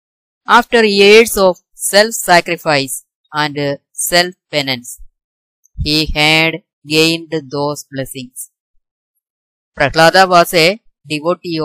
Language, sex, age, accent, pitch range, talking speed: Malayalam, female, 20-39, native, 140-180 Hz, 90 wpm